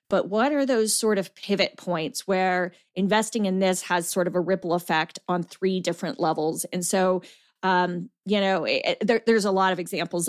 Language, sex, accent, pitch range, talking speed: English, female, American, 180-210 Hz, 185 wpm